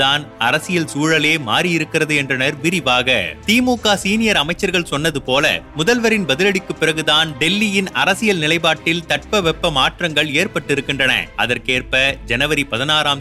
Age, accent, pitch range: 30-49, native, 140-170 Hz